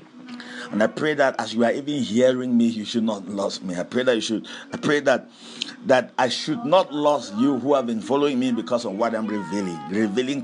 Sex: male